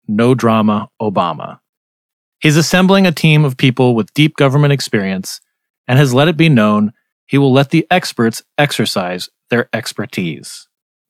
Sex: male